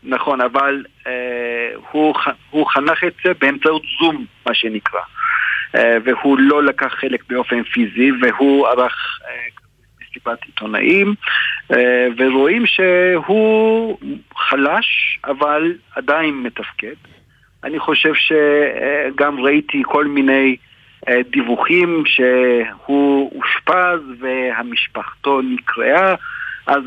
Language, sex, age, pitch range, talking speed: Hebrew, male, 50-69, 125-150 Hz, 100 wpm